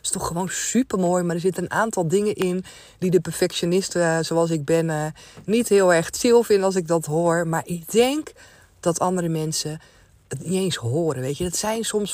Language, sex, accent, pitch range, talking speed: Dutch, female, Dutch, 160-200 Hz, 210 wpm